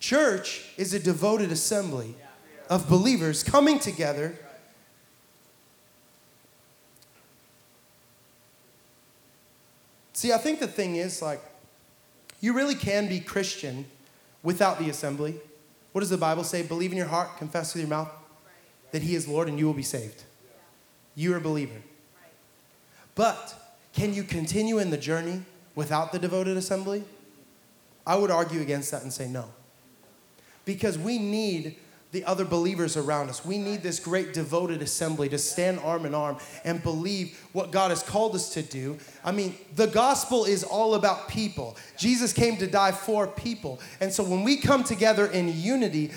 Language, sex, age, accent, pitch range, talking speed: English, male, 20-39, American, 150-200 Hz, 155 wpm